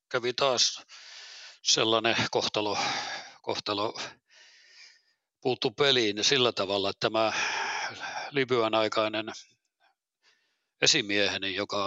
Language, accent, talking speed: Finnish, native, 75 wpm